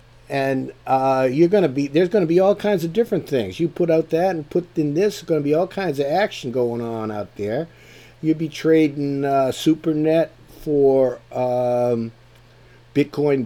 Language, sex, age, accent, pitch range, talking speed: English, male, 50-69, American, 125-160 Hz, 185 wpm